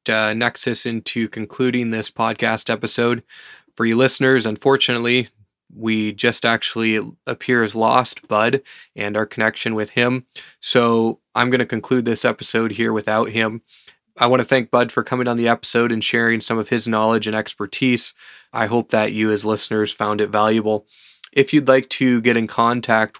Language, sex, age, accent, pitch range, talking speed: English, male, 20-39, American, 105-120 Hz, 175 wpm